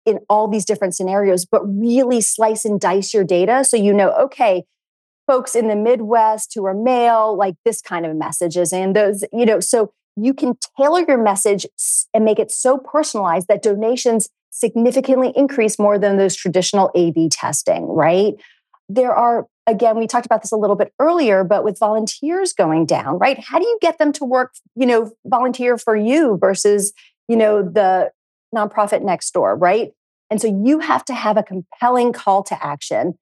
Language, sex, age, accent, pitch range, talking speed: English, female, 30-49, American, 195-245 Hz, 185 wpm